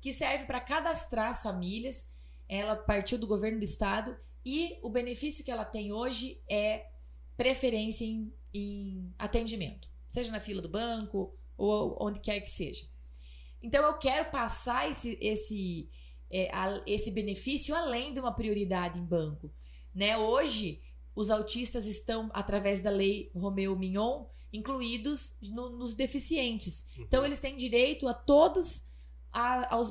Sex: female